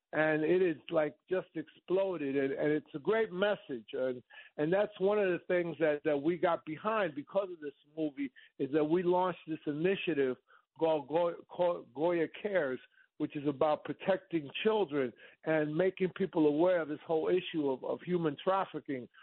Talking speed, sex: 170 wpm, male